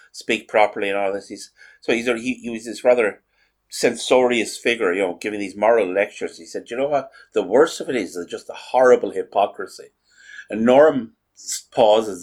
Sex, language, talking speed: male, English, 185 wpm